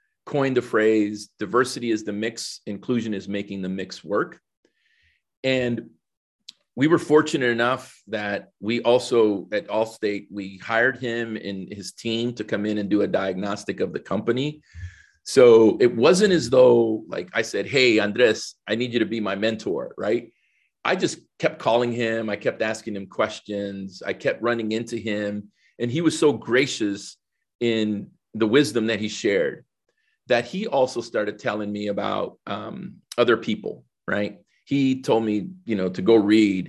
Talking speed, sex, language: 165 wpm, male, English